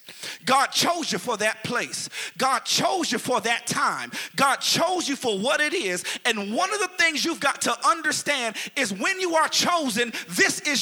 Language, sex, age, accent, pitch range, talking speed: English, male, 30-49, American, 245-315 Hz, 195 wpm